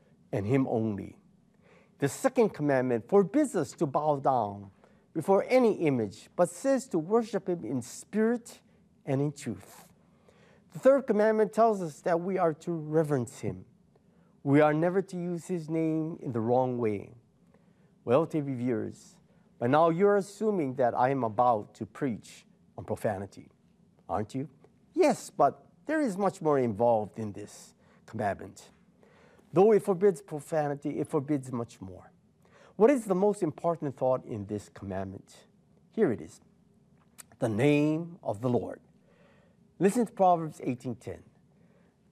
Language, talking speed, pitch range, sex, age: English, 145 wpm, 125-190 Hz, male, 50-69